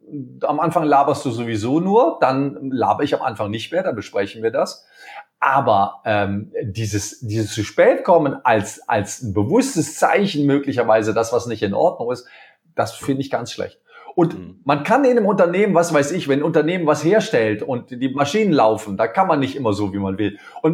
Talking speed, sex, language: 200 wpm, male, German